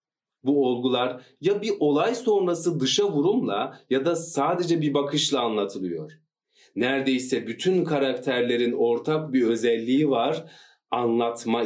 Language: Turkish